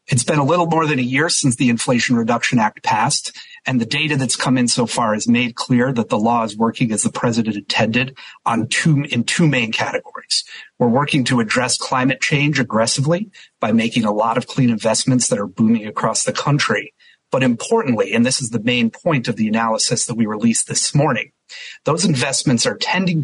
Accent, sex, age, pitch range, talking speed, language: American, male, 30-49, 115-150 Hz, 205 wpm, English